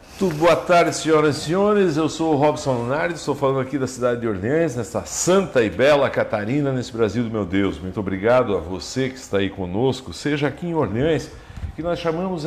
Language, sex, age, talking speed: Portuguese, male, 60-79, 205 wpm